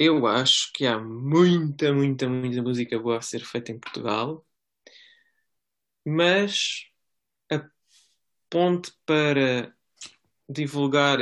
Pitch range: 120-145 Hz